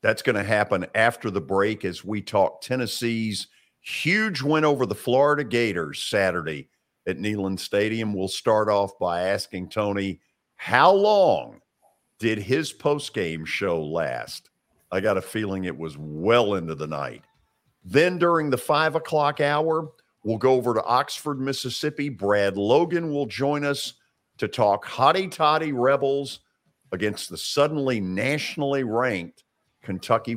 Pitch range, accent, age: 100-150 Hz, American, 50-69